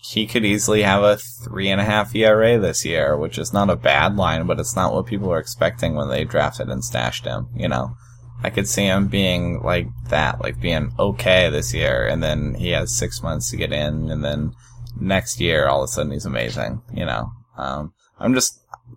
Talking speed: 210 wpm